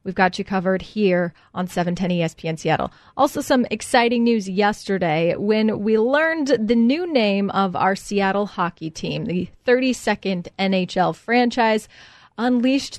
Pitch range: 185-230 Hz